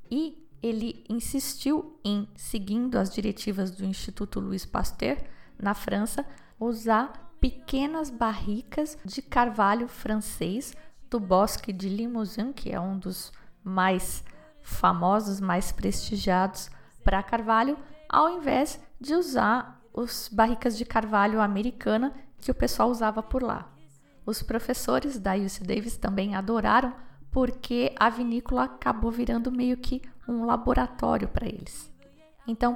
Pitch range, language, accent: 205-255 Hz, Portuguese, Brazilian